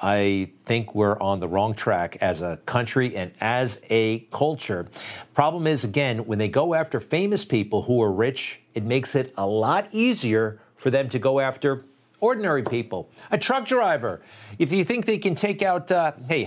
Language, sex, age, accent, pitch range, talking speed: English, male, 50-69, American, 110-155 Hz, 185 wpm